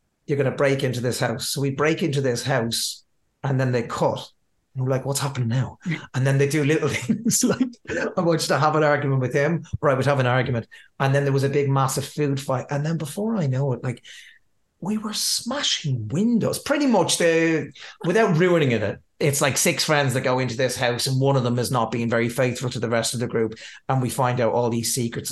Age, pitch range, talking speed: 30-49, 125-155 Hz, 235 wpm